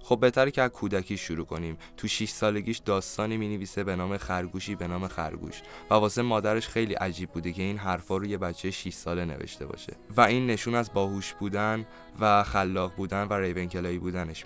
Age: 20-39